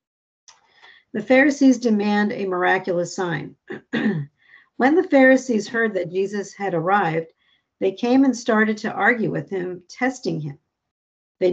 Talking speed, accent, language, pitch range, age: 130 wpm, American, English, 175-230 Hz, 50-69